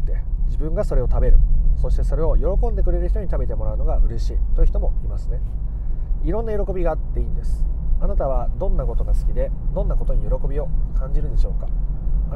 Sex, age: male, 30-49